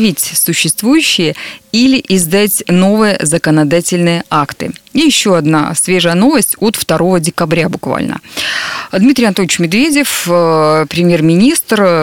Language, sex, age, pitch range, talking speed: Russian, female, 20-39, 160-205 Hz, 95 wpm